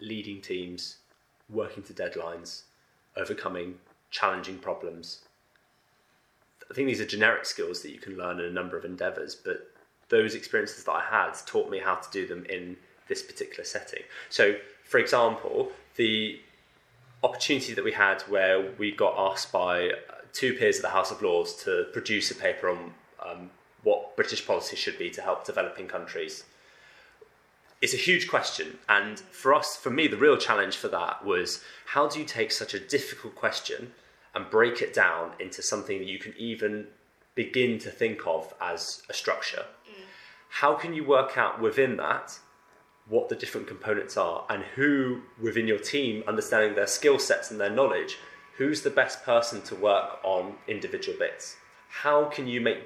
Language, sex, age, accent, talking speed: English, male, 20-39, British, 170 wpm